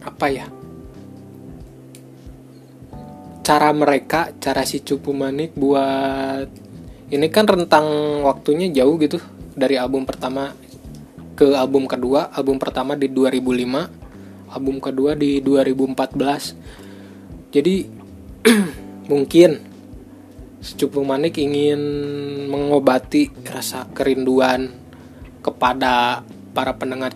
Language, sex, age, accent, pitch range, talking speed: Indonesian, male, 20-39, native, 130-145 Hz, 90 wpm